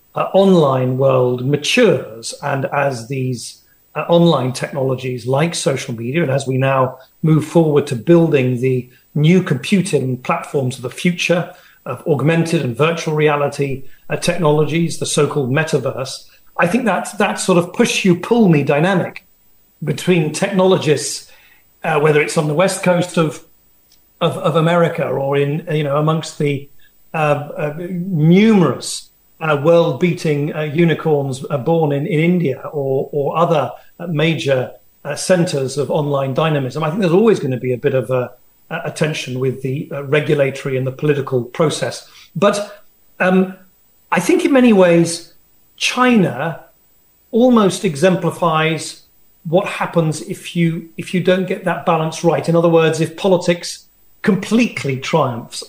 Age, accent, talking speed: 40-59, British, 150 wpm